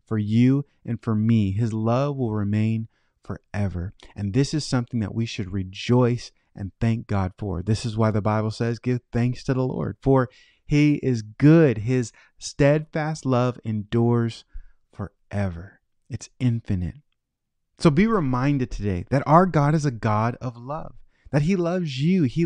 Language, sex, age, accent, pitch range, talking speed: English, male, 30-49, American, 115-150 Hz, 165 wpm